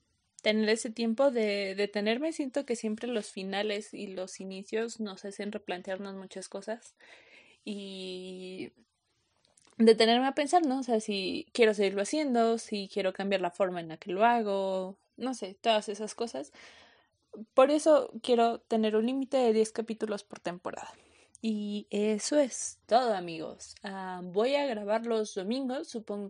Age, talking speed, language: 20-39, 155 wpm, Spanish